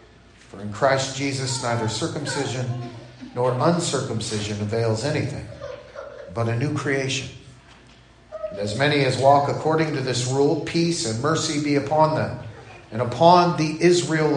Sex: male